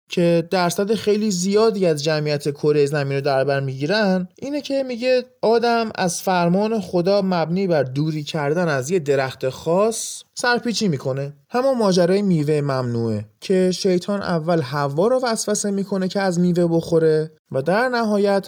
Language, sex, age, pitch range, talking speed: Persian, male, 20-39, 150-215 Hz, 150 wpm